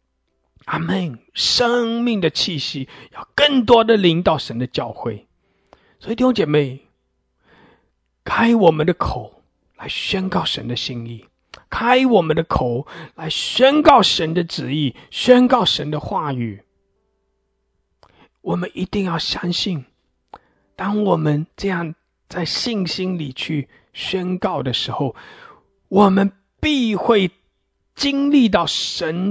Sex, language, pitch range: male, English, 115-195 Hz